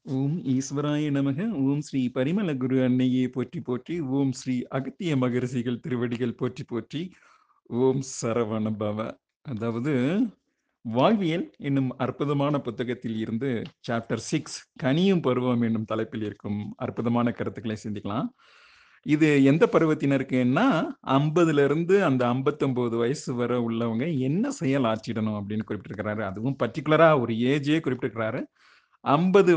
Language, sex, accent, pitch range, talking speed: Tamil, male, native, 120-155 Hz, 115 wpm